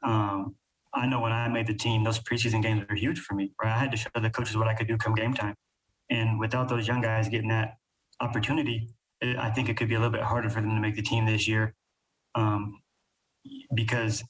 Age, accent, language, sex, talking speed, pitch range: 20-39, American, English, male, 240 wpm, 110-125 Hz